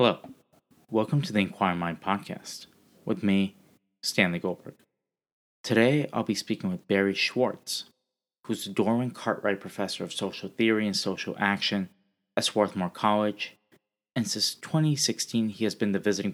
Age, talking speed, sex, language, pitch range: 30-49, 145 wpm, male, English, 95-115 Hz